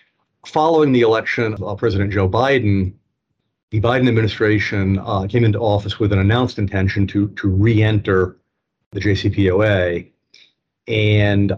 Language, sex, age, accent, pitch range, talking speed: English, male, 40-59, American, 100-115 Hz, 125 wpm